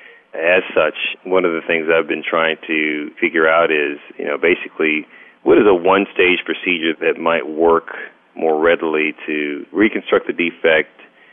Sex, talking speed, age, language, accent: male, 160 wpm, 40-59, English, American